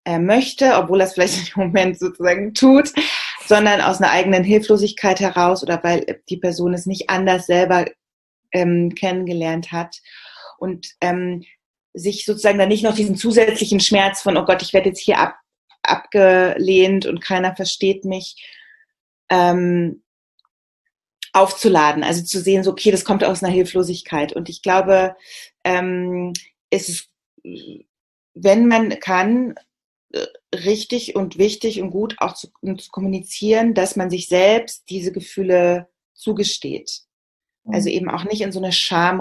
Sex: female